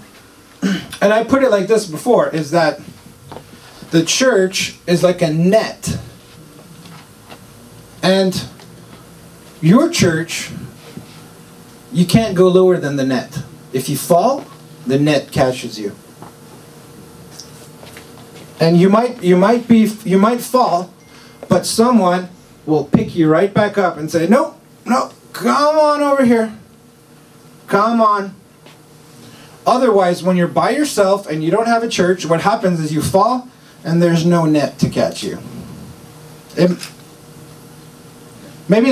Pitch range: 160-215 Hz